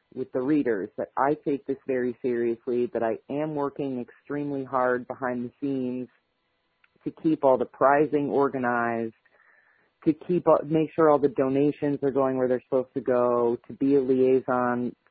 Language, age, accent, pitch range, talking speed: English, 30-49, American, 120-140 Hz, 165 wpm